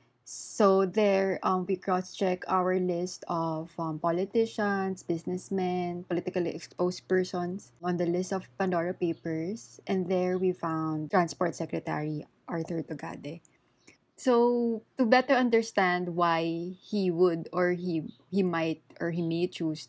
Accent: Filipino